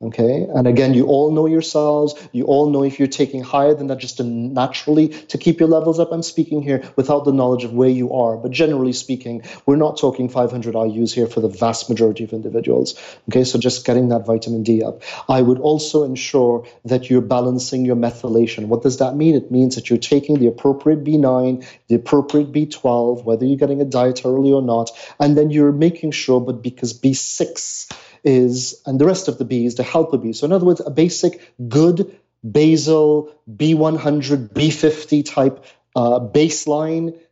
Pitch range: 125-150 Hz